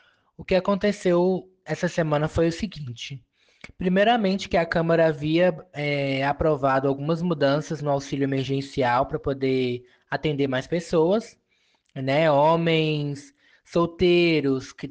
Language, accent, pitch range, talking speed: Portuguese, Brazilian, 140-185 Hz, 115 wpm